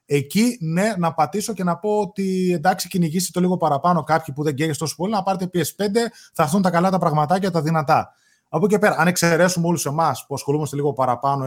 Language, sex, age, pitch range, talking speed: Greek, male, 20-39, 140-185 Hz, 220 wpm